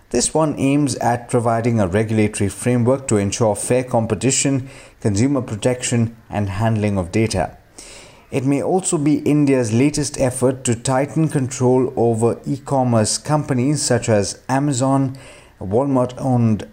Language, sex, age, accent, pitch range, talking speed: English, male, 50-69, Indian, 105-130 Hz, 125 wpm